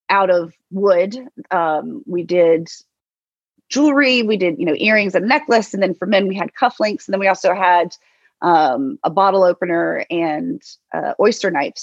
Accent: American